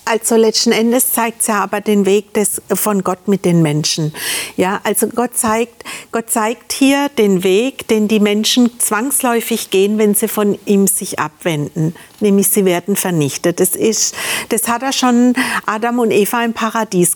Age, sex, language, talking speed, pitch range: 50-69, female, German, 175 wpm, 200-245 Hz